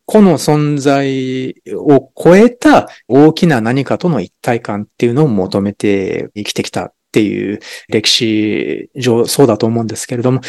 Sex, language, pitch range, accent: male, Japanese, 115-165 Hz, native